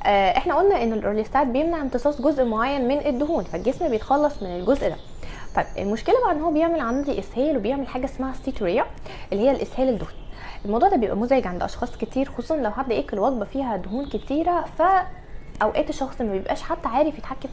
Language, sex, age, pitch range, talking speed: Arabic, female, 20-39, 220-290 Hz, 185 wpm